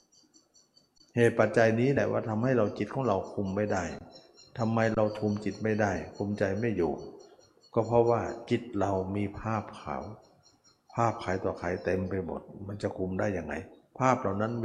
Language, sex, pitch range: Thai, male, 90-120 Hz